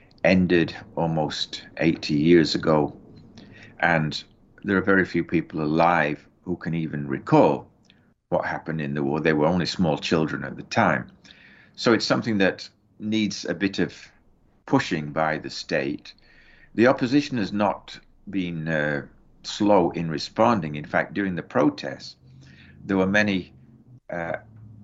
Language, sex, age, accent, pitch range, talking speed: English, male, 60-79, British, 75-100 Hz, 145 wpm